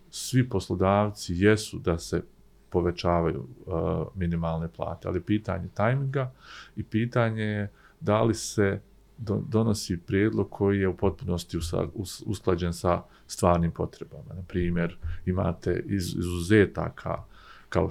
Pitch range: 90-105 Hz